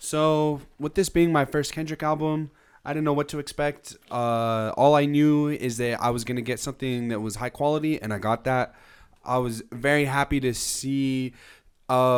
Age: 20-39